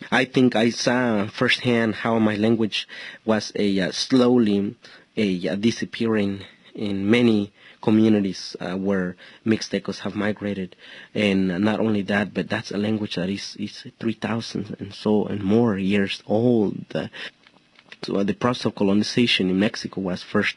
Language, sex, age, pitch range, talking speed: English, male, 30-49, 95-110 Hz, 150 wpm